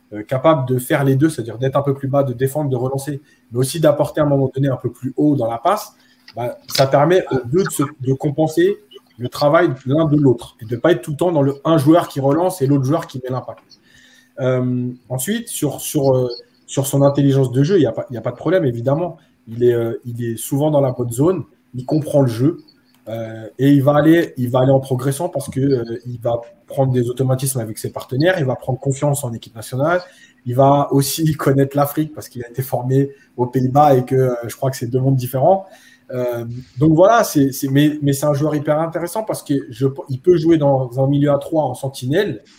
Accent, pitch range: French, 125-155 Hz